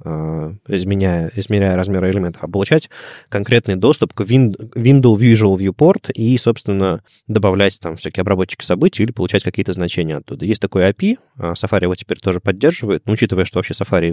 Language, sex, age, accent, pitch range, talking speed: Russian, male, 20-39, native, 95-125 Hz, 155 wpm